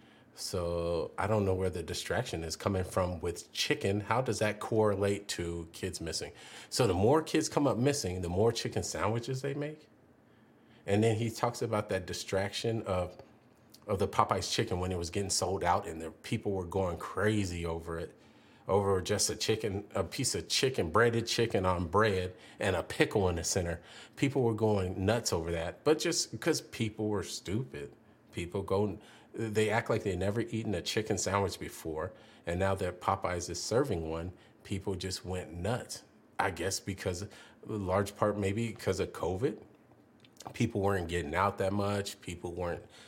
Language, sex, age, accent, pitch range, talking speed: English, male, 40-59, American, 90-110 Hz, 180 wpm